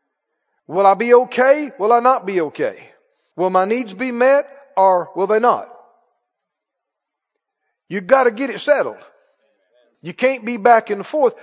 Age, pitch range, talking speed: 50-69, 205-290 Hz, 160 wpm